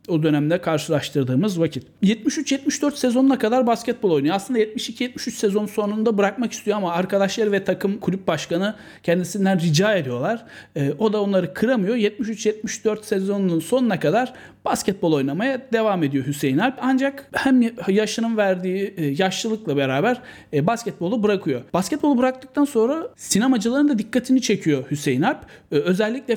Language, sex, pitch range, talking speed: Turkish, male, 165-240 Hz, 125 wpm